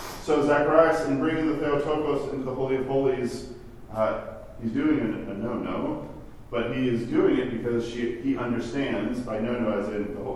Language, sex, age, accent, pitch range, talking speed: English, male, 40-59, American, 110-140 Hz, 180 wpm